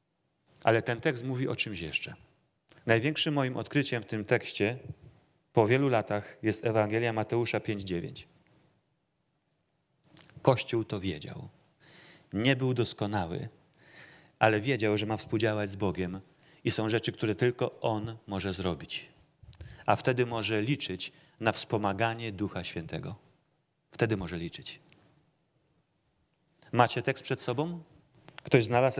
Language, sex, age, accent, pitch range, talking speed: Polish, male, 40-59, native, 110-150 Hz, 120 wpm